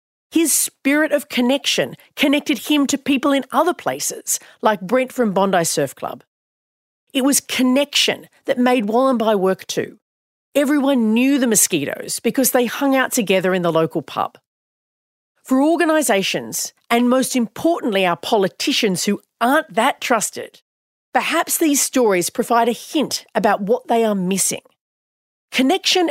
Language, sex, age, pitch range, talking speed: English, female, 40-59, 200-270 Hz, 140 wpm